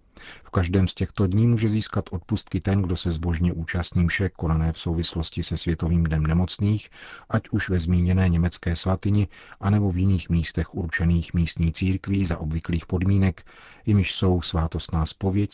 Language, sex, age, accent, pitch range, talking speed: Czech, male, 40-59, native, 85-95 Hz, 160 wpm